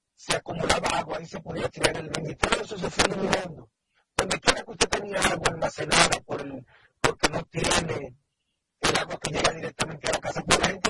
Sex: male